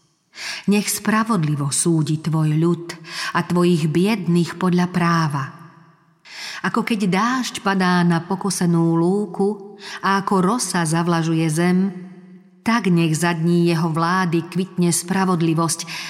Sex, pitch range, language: female, 165-200 Hz, Slovak